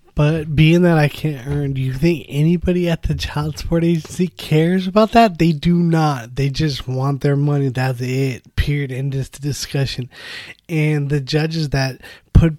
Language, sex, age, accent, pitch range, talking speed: English, male, 20-39, American, 135-165 Hz, 180 wpm